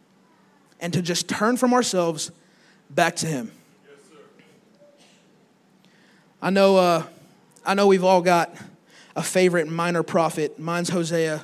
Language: English